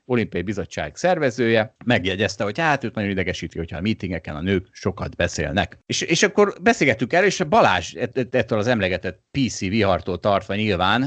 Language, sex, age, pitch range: Hungarian, male, 30-49, 95-145 Hz